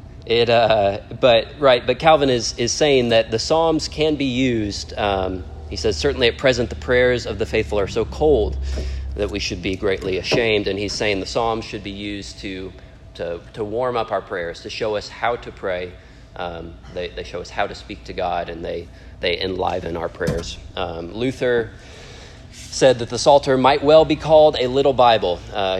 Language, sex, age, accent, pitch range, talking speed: English, male, 30-49, American, 90-120 Hz, 200 wpm